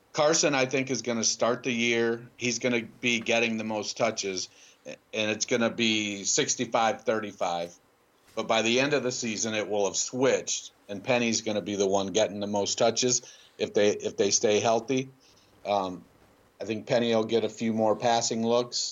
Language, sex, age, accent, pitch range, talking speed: English, male, 50-69, American, 105-125 Hz, 195 wpm